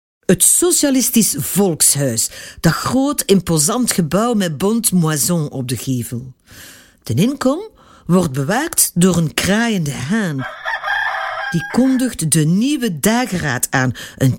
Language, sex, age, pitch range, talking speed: Dutch, female, 50-69, 155-230 Hz, 115 wpm